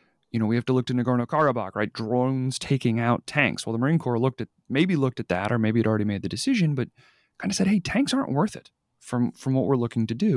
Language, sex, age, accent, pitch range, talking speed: English, male, 30-49, American, 110-140 Hz, 265 wpm